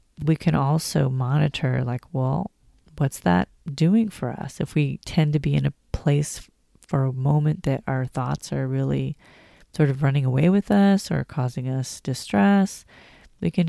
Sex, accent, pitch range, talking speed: female, American, 135-185 Hz, 170 wpm